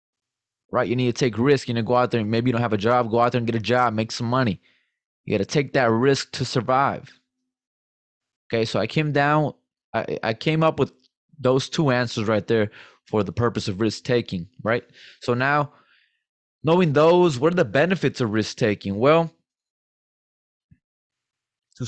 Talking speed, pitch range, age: 195 wpm, 110-130 Hz, 20-39